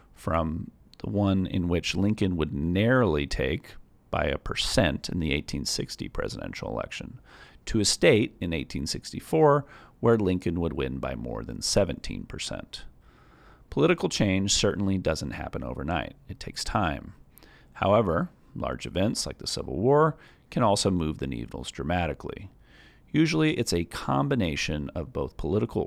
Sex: male